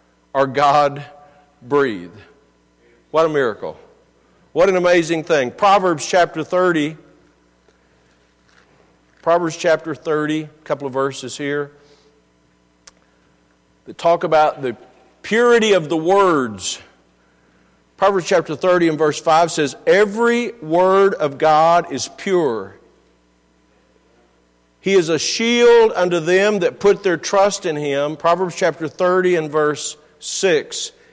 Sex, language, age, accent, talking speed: male, English, 50-69, American, 115 wpm